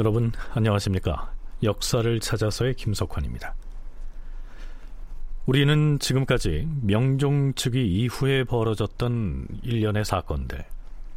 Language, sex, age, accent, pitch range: Korean, male, 40-59, native, 90-135 Hz